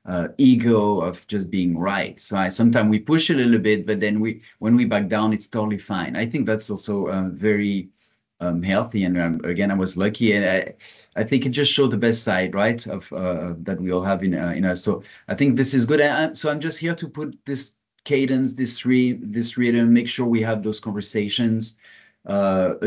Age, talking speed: 30-49, 210 wpm